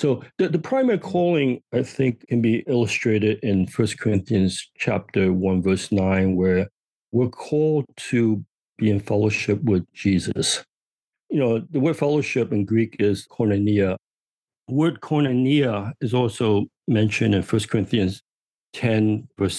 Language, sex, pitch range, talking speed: English, male, 100-120 Hz, 140 wpm